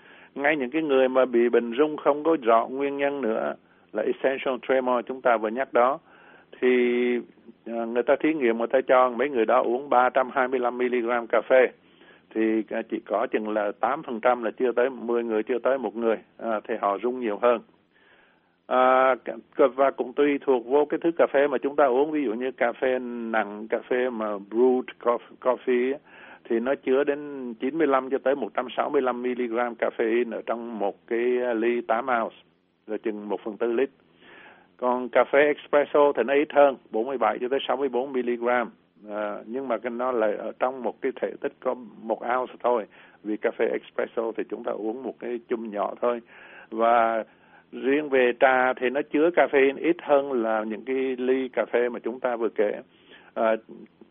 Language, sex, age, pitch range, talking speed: Vietnamese, male, 60-79, 115-135 Hz, 185 wpm